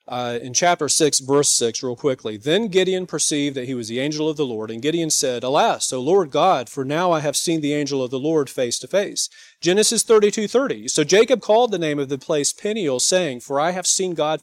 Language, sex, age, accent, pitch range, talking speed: English, male, 40-59, American, 145-205 Hz, 235 wpm